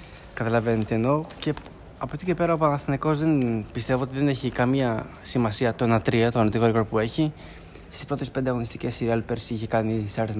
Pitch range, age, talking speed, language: 110-130 Hz, 20-39, 195 wpm, Greek